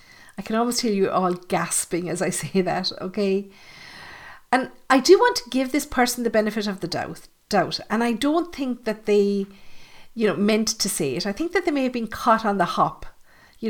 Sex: female